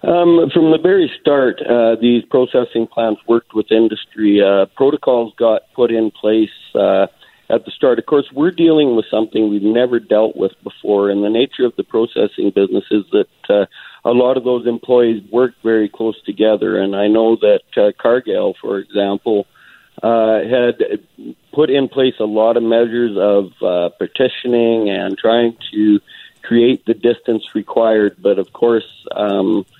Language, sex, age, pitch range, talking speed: English, male, 50-69, 105-125 Hz, 165 wpm